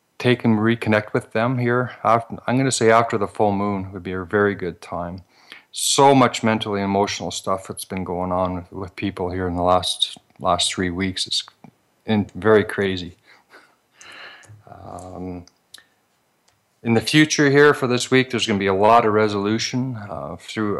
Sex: male